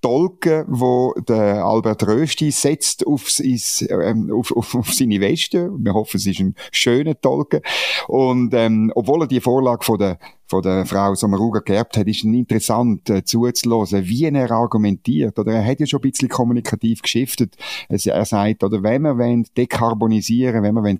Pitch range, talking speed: 100-130 Hz, 155 wpm